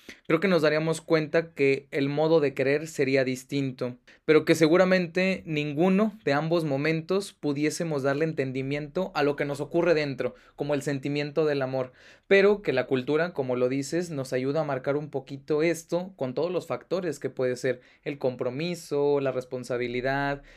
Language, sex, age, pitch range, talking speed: Spanish, male, 20-39, 140-180 Hz, 170 wpm